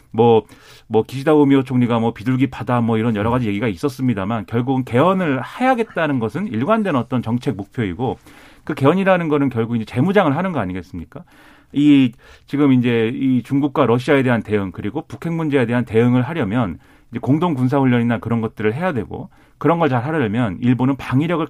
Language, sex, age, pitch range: Korean, male, 40-59, 115-150 Hz